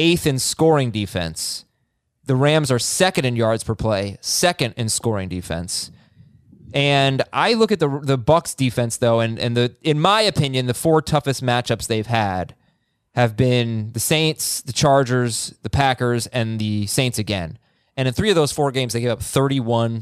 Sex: male